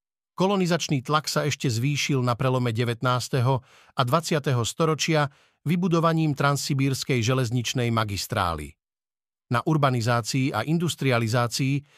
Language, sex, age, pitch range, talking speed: Slovak, male, 50-69, 120-140 Hz, 95 wpm